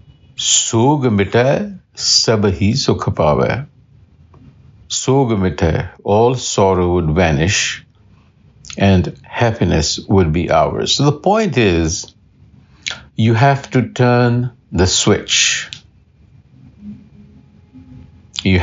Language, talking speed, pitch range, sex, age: English, 75 wpm, 95-135 Hz, male, 60-79